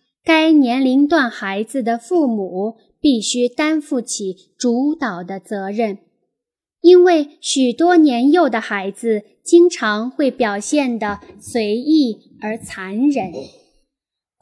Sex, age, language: female, 10-29, Chinese